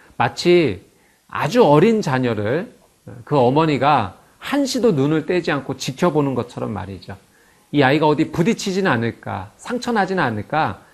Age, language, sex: 40-59, Korean, male